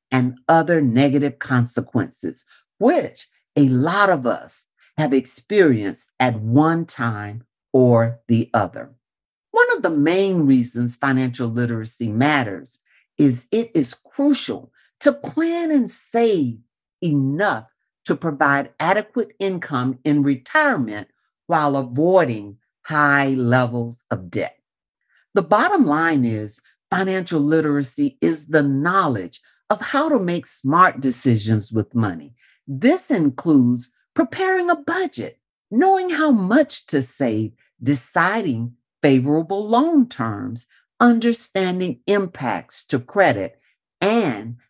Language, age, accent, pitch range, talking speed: English, 50-69, American, 120-195 Hz, 110 wpm